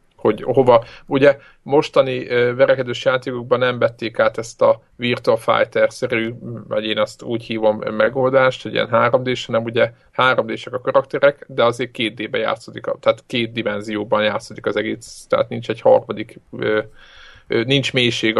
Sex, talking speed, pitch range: male, 155 wpm, 115-140 Hz